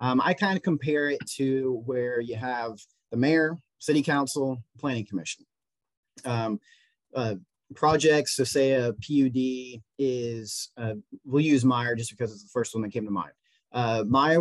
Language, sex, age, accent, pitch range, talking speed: English, male, 30-49, American, 115-135 Hz, 160 wpm